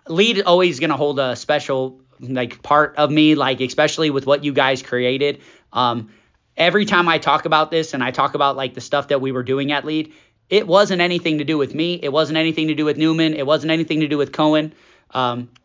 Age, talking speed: 20-39, 235 wpm